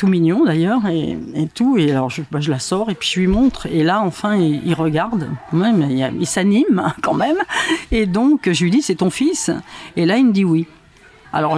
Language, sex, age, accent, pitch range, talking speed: French, female, 40-59, French, 155-215 Hz, 235 wpm